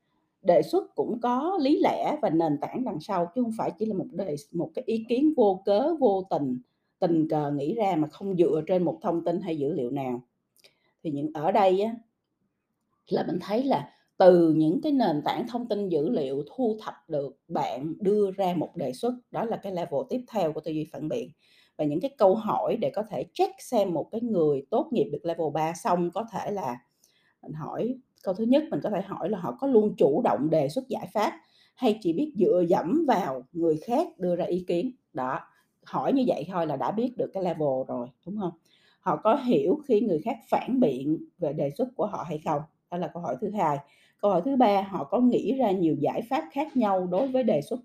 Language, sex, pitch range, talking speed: Vietnamese, female, 160-240 Hz, 230 wpm